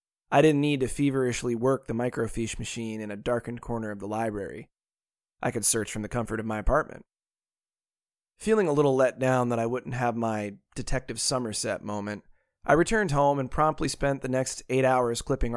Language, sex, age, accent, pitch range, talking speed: English, male, 20-39, American, 115-140 Hz, 190 wpm